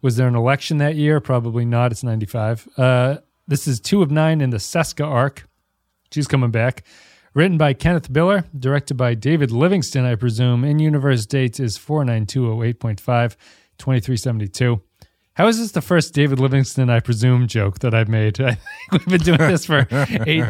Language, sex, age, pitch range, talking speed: English, male, 30-49, 115-145 Hz, 170 wpm